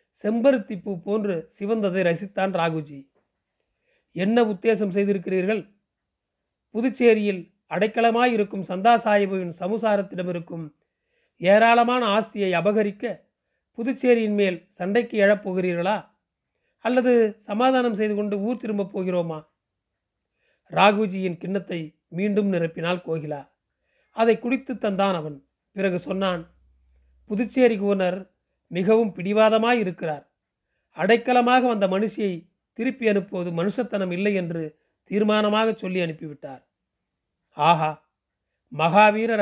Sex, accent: male, native